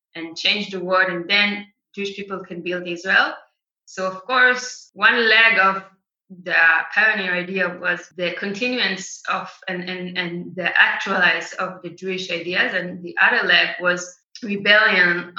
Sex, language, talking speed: female, English, 150 wpm